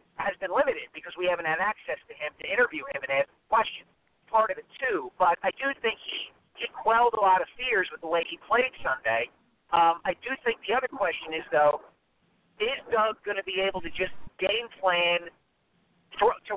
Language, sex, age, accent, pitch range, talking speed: English, male, 50-69, American, 180-235 Hz, 205 wpm